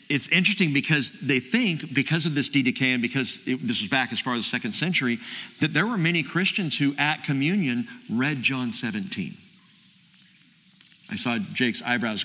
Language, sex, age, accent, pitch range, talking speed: English, male, 50-69, American, 135-190 Hz, 175 wpm